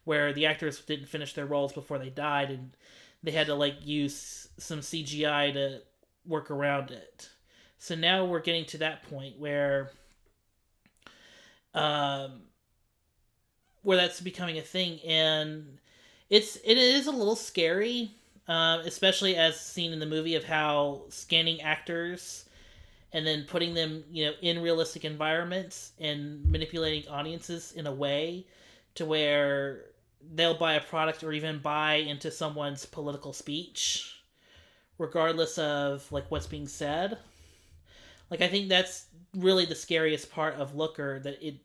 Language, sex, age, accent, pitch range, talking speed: English, male, 30-49, American, 145-165 Hz, 145 wpm